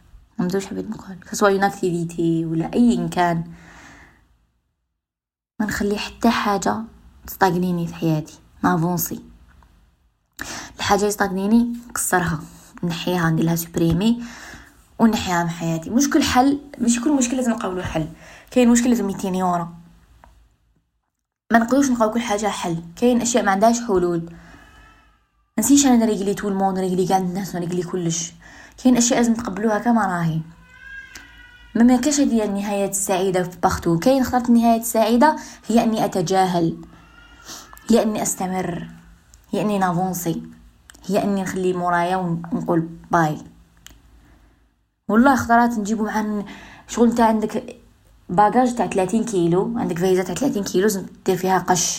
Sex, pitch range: female, 170-230 Hz